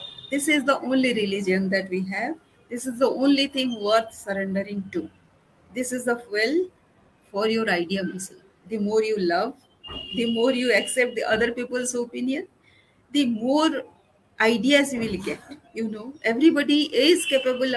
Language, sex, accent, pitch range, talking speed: English, female, Indian, 215-260 Hz, 155 wpm